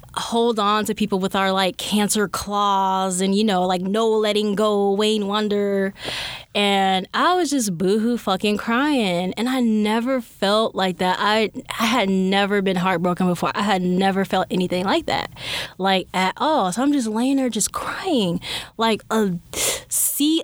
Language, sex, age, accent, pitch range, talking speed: English, female, 10-29, American, 195-320 Hz, 170 wpm